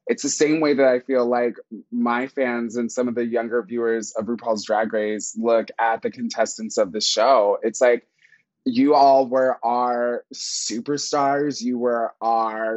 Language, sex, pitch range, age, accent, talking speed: English, male, 115-140 Hz, 20-39, American, 175 wpm